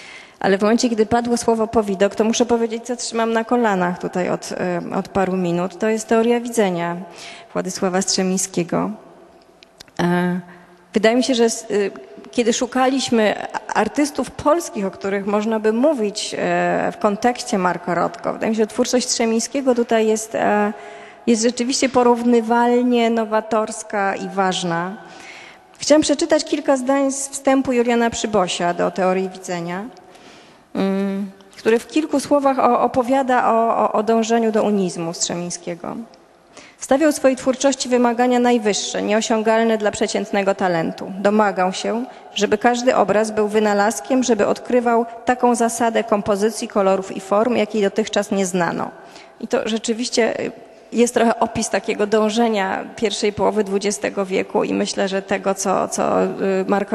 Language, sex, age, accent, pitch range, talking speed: Polish, female, 20-39, native, 195-240 Hz, 135 wpm